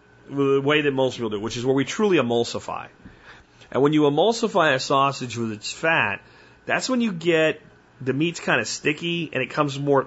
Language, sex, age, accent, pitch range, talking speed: English, male, 30-49, American, 115-155 Hz, 205 wpm